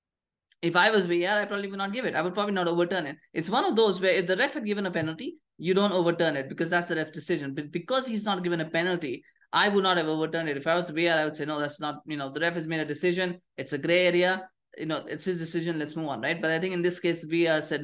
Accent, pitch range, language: Indian, 150-185 Hz, English